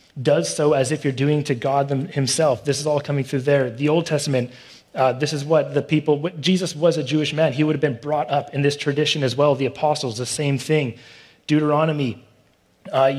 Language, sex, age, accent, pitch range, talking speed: English, male, 30-49, American, 140-155 Hz, 215 wpm